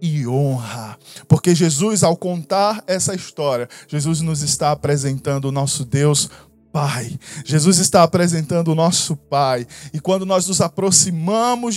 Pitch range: 140-180 Hz